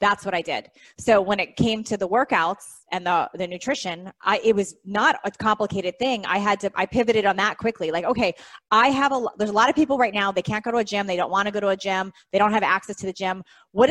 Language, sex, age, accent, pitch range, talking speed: English, female, 20-39, American, 185-225 Hz, 270 wpm